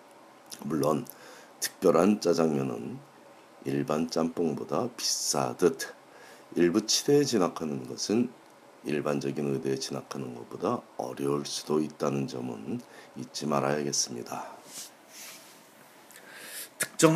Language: Korean